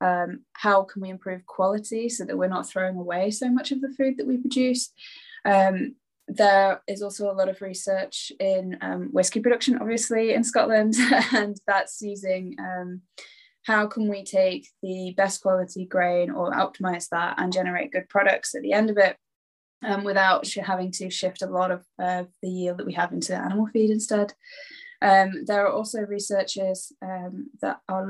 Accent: British